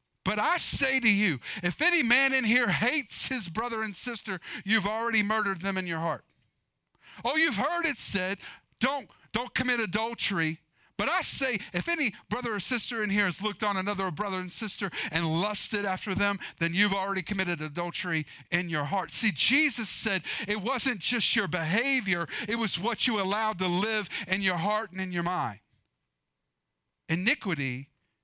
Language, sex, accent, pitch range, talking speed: English, male, American, 175-225 Hz, 175 wpm